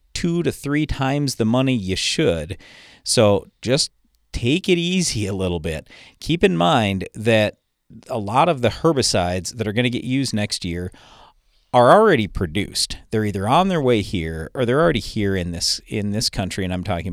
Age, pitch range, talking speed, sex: 40-59, 95-135 Hz, 190 wpm, male